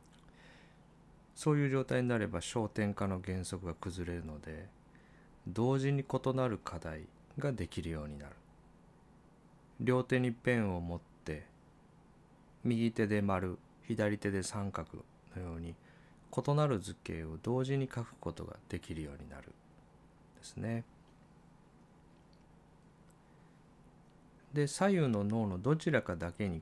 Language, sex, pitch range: Japanese, male, 85-125 Hz